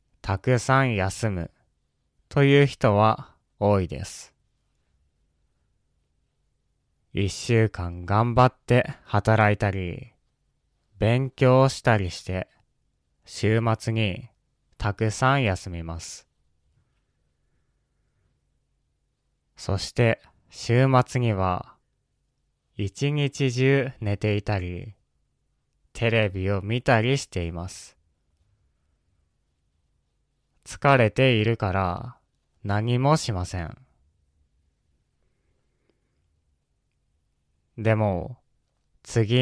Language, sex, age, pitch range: Japanese, male, 20-39, 90-125 Hz